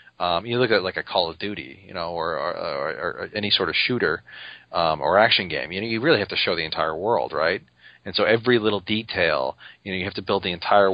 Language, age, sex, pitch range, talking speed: English, 30-49, male, 90-110 Hz, 260 wpm